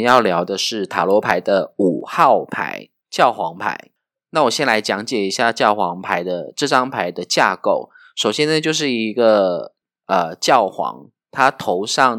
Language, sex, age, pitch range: Chinese, male, 20-39, 100-140 Hz